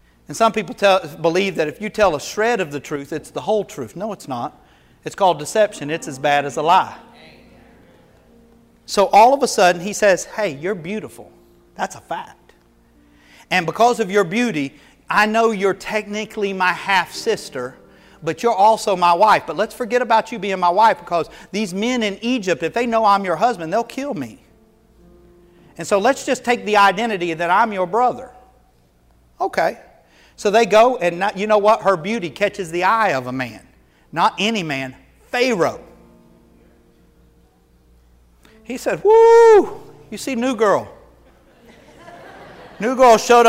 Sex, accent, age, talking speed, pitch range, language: male, American, 40-59, 170 wpm, 170-235 Hz, English